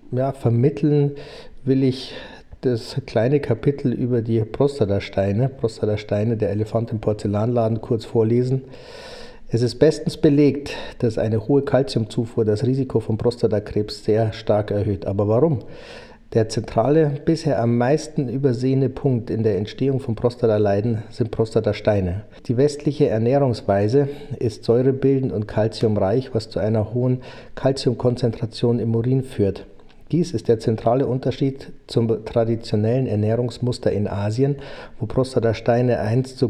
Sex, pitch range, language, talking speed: male, 110-130 Hz, German, 125 wpm